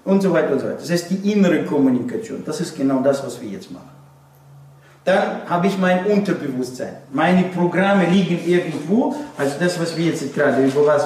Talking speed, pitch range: 195 wpm, 125-185 Hz